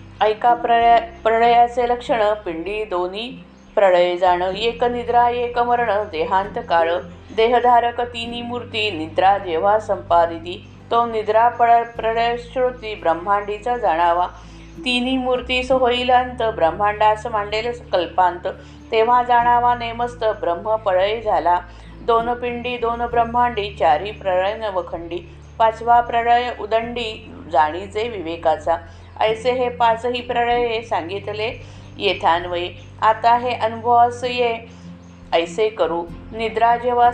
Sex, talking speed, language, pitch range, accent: female, 100 wpm, Marathi, 180-240 Hz, native